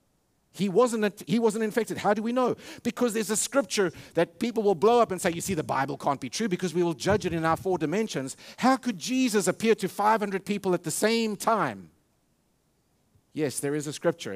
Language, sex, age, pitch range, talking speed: English, male, 50-69, 155-220 Hz, 215 wpm